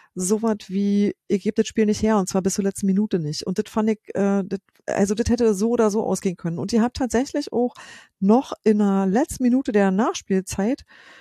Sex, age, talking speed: female, 40-59, 220 wpm